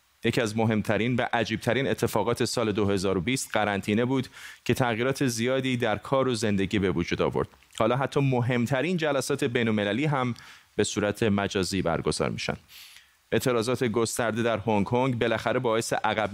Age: 30-49